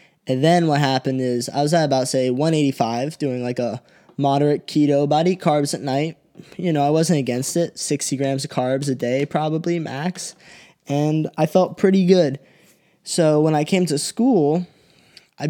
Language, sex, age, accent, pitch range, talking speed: English, male, 10-29, American, 140-165 Hz, 180 wpm